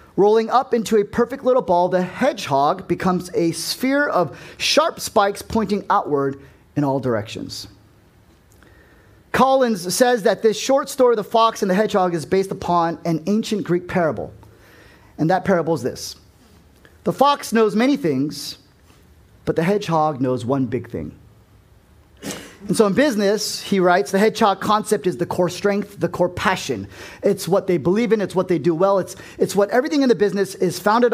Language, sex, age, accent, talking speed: English, male, 30-49, American, 175 wpm